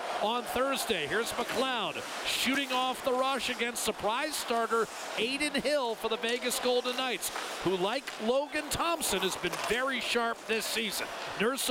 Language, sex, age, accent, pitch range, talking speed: English, male, 40-59, American, 210-275 Hz, 150 wpm